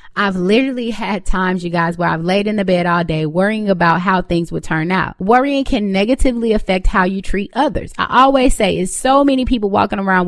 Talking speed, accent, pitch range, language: 220 wpm, American, 175-240 Hz, English